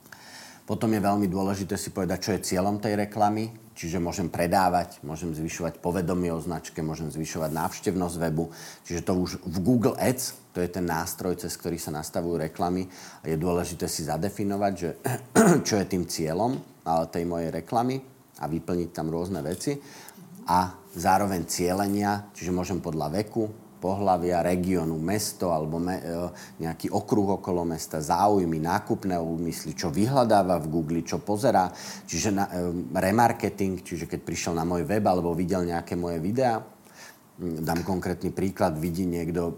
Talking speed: 155 wpm